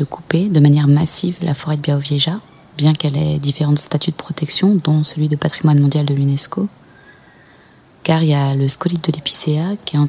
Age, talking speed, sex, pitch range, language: 20-39, 200 wpm, female, 145-170 Hz, French